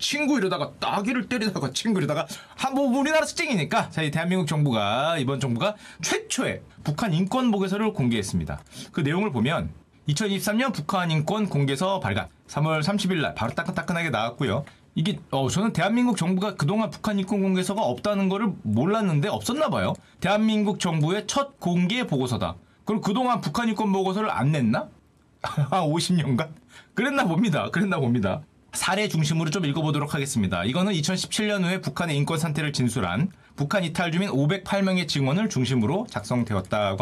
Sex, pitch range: male, 150-220 Hz